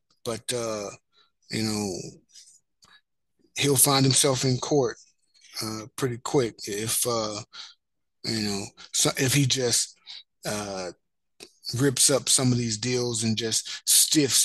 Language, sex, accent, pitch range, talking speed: English, male, American, 115-145 Hz, 120 wpm